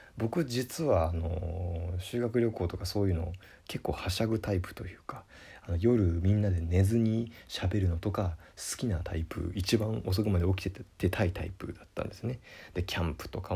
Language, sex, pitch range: Japanese, male, 90-125 Hz